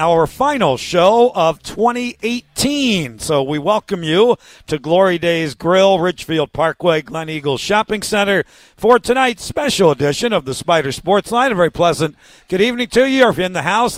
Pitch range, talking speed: 155-200 Hz, 170 wpm